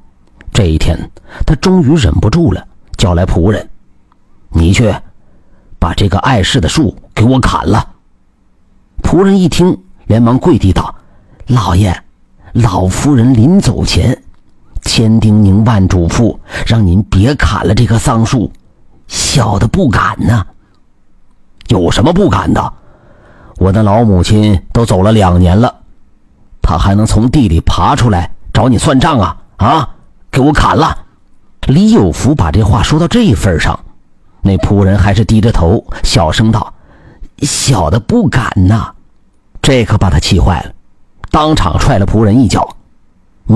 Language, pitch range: Chinese, 90-120 Hz